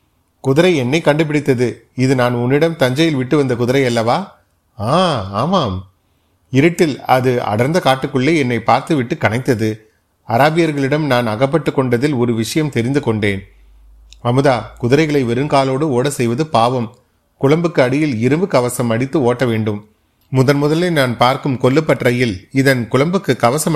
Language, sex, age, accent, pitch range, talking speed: Tamil, male, 30-49, native, 115-140 Hz, 115 wpm